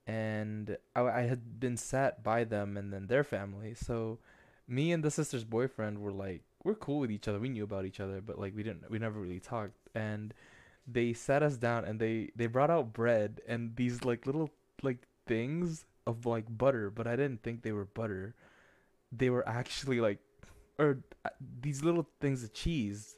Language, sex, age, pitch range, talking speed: English, male, 20-39, 110-150 Hz, 195 wpm